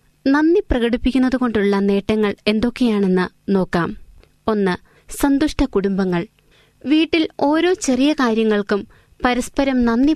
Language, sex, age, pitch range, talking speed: Malayalam, female, 20-39, 195-265 Hz, 85 wpm